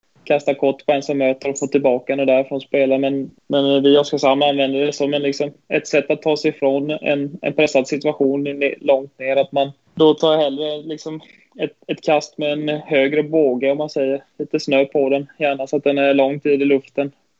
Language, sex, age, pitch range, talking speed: Swedish, male, 20-39, 135-150 Hz, 215 wpm